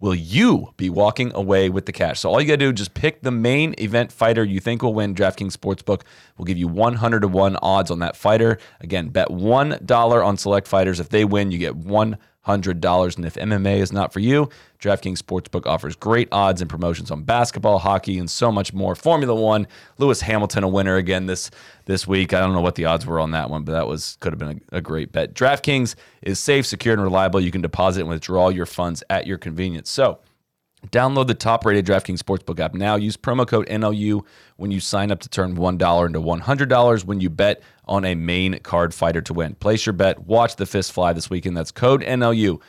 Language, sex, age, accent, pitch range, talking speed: English, male, 30-49, American, 90-110 Hz, 225 wpm